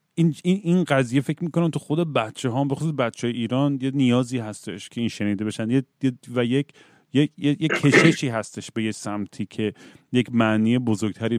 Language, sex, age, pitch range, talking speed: Persian, male, 40-59, 110-140 Hz, 190 wpm